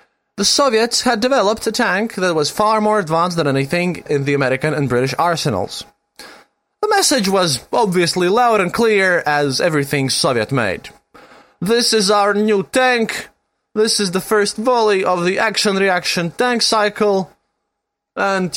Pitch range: 145-215 Hz